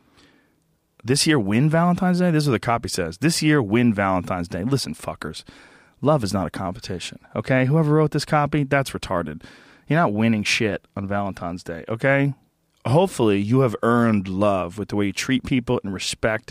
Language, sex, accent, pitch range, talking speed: English, male, American, 110-140 Hz, 185 wpm